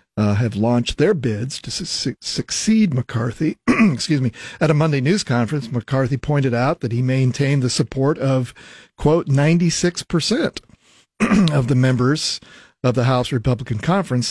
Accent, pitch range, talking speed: American, 115-145 Hz, 145 wpm